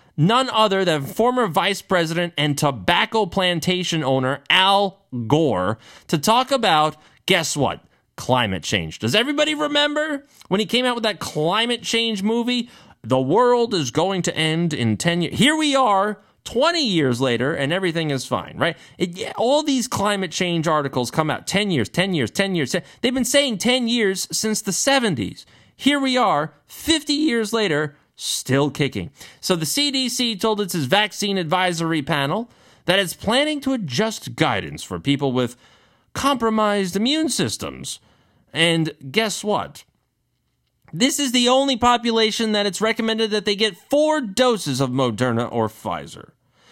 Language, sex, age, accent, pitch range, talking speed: English, male, 30-49, American, 155-235 Hz, 155 wpm